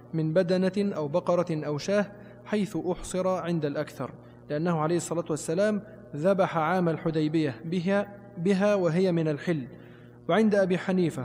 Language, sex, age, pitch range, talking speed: Arabic, male, 20-39, 155-195 Hz, 135 wpm